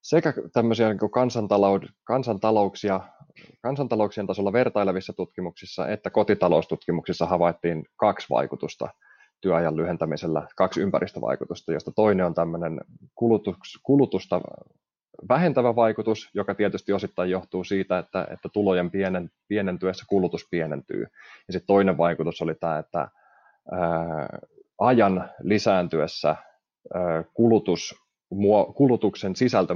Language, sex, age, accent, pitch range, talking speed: Finnish, male, 20-39, native, 90-105 Hz, 90 wpm